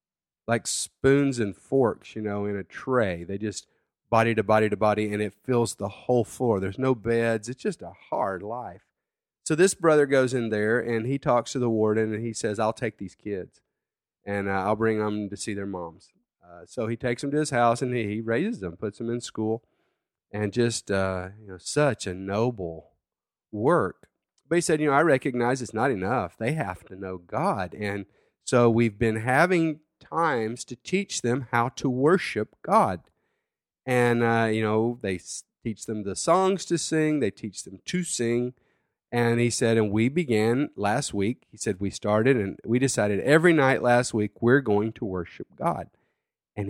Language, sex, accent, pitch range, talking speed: English, male, American, 105-130 Hz, 195 wpm